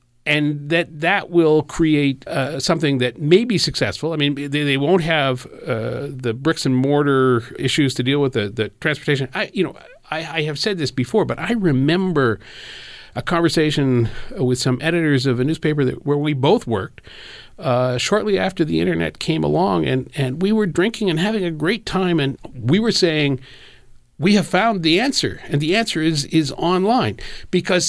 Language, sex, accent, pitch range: English, male, American, 130-170 Hz